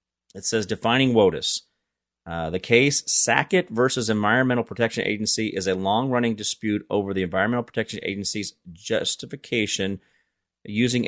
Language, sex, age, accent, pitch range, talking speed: English, male, 30-49, American, 95-125 Hz, 125 wpm